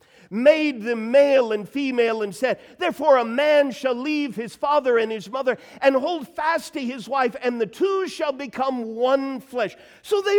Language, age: English, 50-69